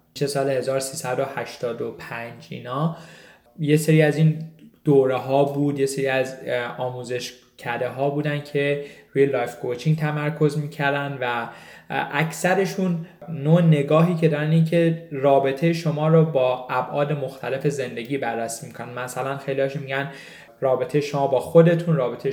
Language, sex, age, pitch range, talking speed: Persian, male, 20-39, 125-150 Hz, 130 wpm